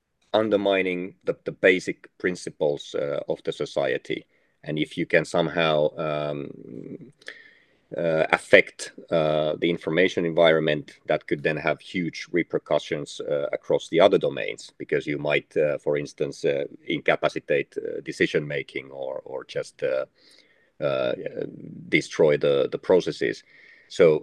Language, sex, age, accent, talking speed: English, male, 40-59, Finnish, 130 wpm